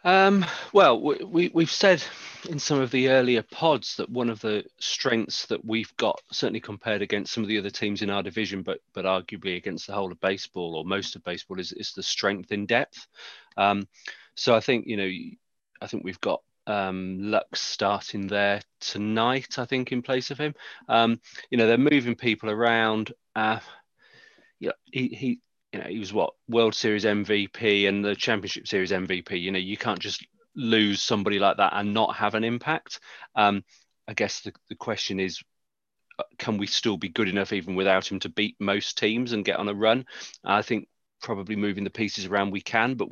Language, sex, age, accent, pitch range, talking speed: English, male, 30-49, British, 100-120 Hz, 200 wpm